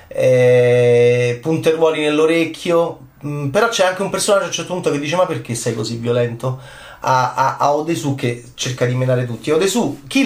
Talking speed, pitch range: 170 wpm, 130-185 Hz